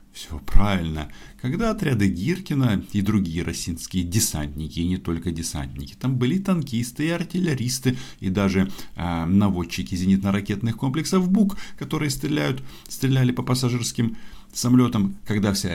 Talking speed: 120 wpm